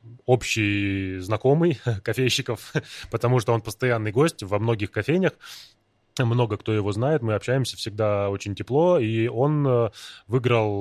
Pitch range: 100-130 Hz